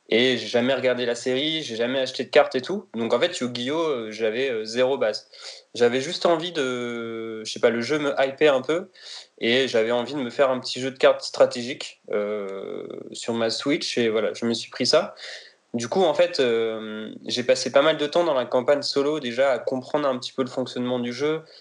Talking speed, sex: 225 wpm, male